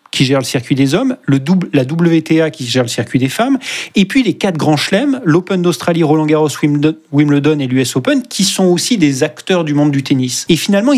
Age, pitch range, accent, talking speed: 30-49, 135-180 Hz, French, 225 wpm